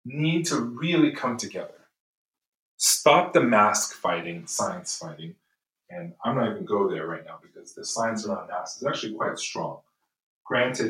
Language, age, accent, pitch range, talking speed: English, 30-49, American, 110-170 Hz, 170 wpm